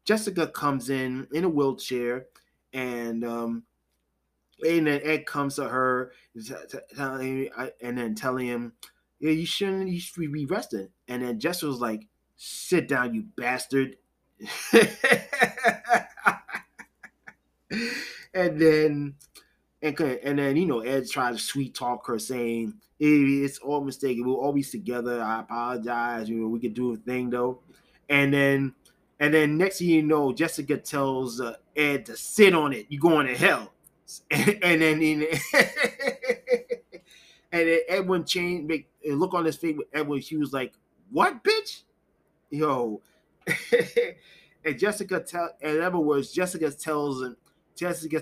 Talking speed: 135 wpm